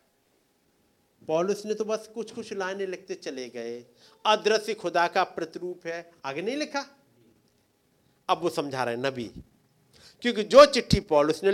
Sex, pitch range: male, 175-250 Hz